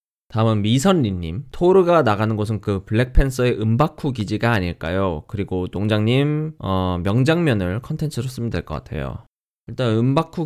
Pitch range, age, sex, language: 95-130 Hz, 20-39, male, Korean